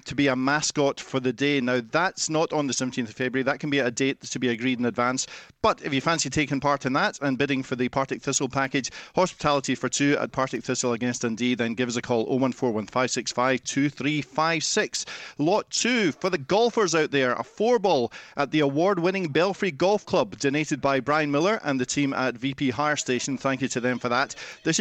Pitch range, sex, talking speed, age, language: 135-175 Hz, male, 215 wpm, 40-59, English